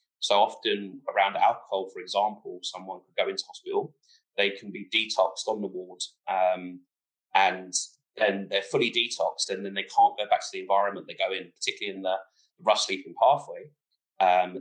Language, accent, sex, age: English, British, male, 30-49